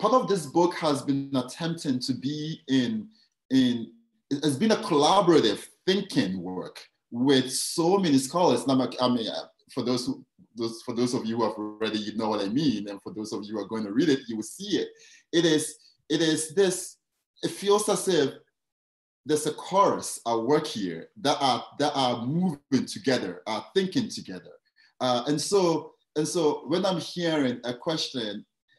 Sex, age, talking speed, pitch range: male, 30-49, 190 wpm, 125-175 Hz